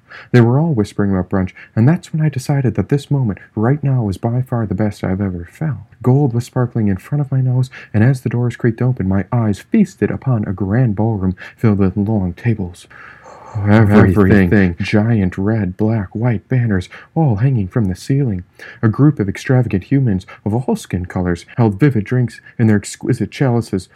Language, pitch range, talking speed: English, 95-125 Hz, 190 wpm